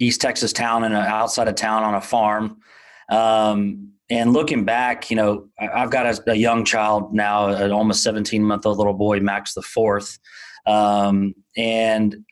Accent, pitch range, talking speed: American, 105-120 Hz, 165 wpm